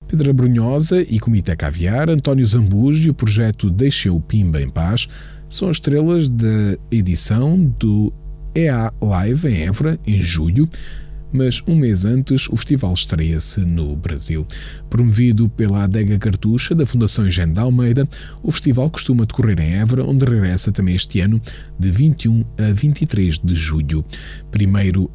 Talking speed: 150 wpm